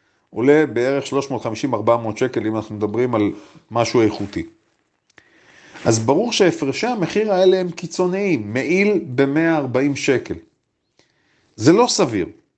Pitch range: 120-165 Hz